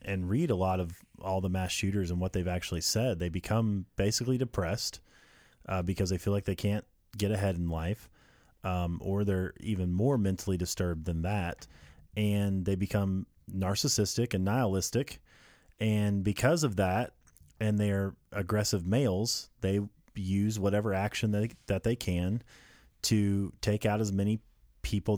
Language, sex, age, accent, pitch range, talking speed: English, male, 30-49, American, 95-115 Hz, 155 wpm